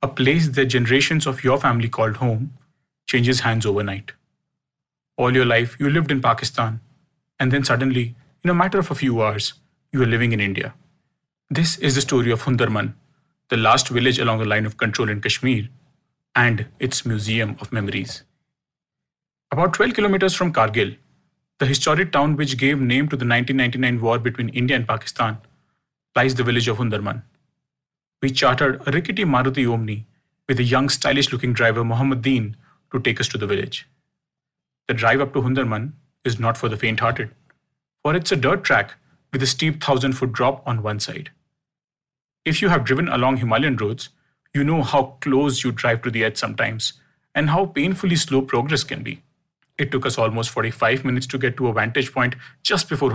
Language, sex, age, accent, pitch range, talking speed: English, male, 30-49, Indian, 120-145 Hz, 180 wpm